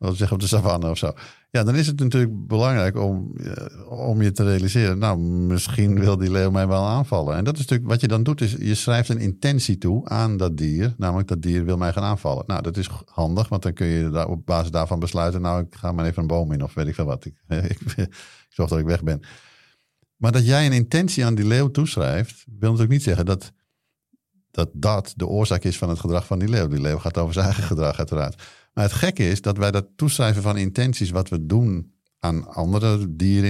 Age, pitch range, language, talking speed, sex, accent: 50-69, 85-110 Hz, Dutch, 240 wpm, male, Dutch